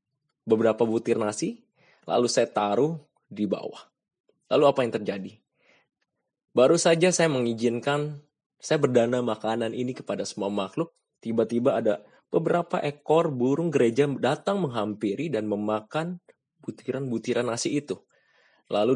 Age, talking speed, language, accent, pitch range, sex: 20-39, 115 wpm, Indonesian, native, 105-135 Hz, male